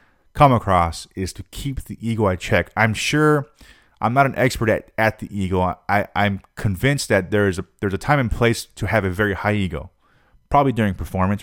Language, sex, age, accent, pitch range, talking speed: English, male, 30-49, American, 95-125 Hz, 205 wpm